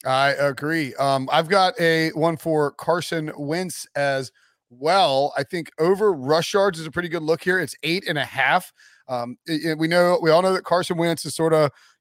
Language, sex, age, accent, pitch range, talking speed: English, male, 40-59, American, 140-170 Hz, 215 wpm